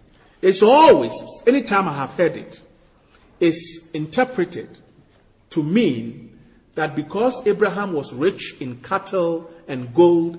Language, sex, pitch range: English, male, 150-215 Hz